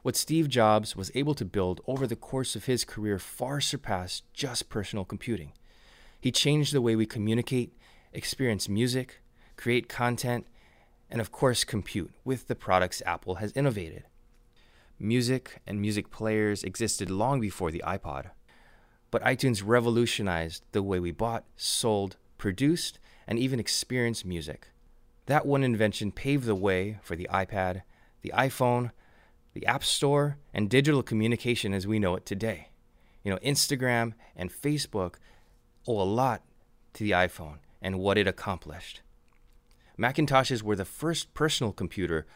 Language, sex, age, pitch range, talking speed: English, male, 20-39, 95-125 Hz, 145 wpm